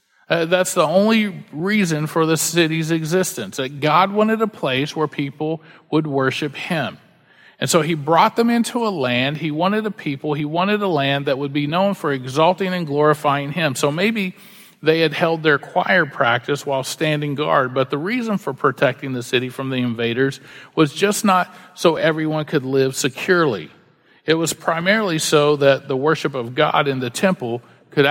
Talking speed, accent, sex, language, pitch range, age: 185 wpm, American, male, English, 135-175 Hz, 50-69